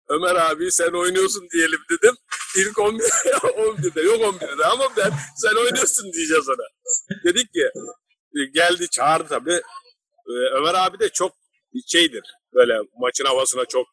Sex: male